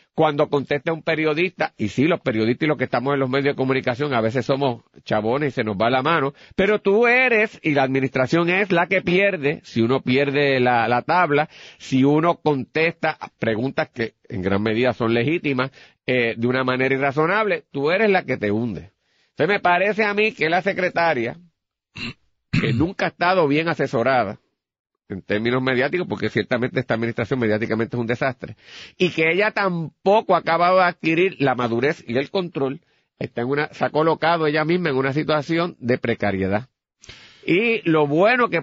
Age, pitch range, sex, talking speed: 40-59, 125-165 Hz, male, 185 wpm